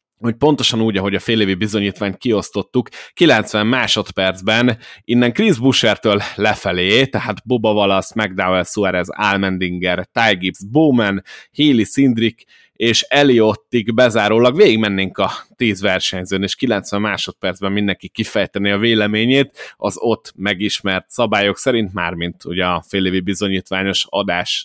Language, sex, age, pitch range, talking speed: Hungarian, male, 20-39, 100-120 Hz, 120 wpm